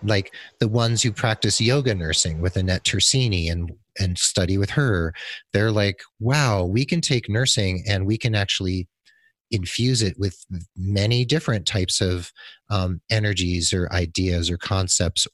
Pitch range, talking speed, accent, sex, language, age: 95-120 Hz, 155 wpm, American, male, English, 30-49